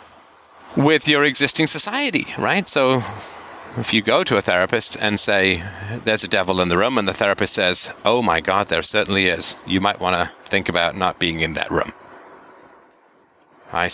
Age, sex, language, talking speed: 40-59, male, English, 180 wpm